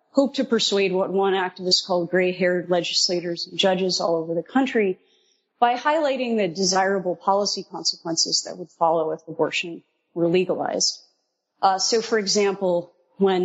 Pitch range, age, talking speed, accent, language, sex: 175-210 Hz, 30-49, 145 wpm, American, English, female